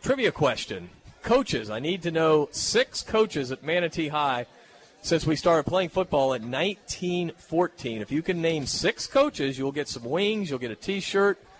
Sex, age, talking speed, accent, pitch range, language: male, 40-59, 170 wpm, American, 140-180 Hz, English